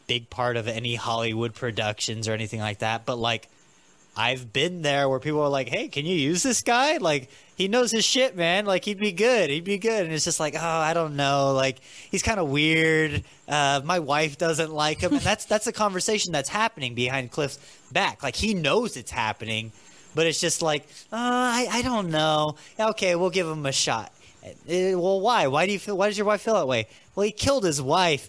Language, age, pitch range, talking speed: English, 20-39, 125-180 Hz, 225 wpm